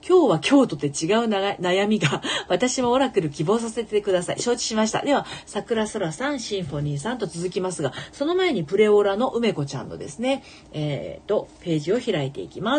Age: 40-59